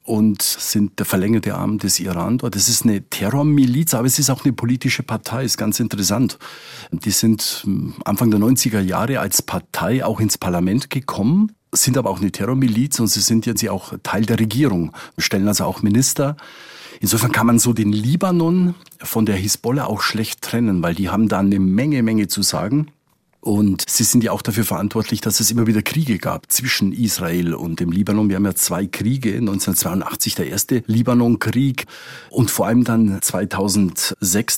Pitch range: 100-120 Hz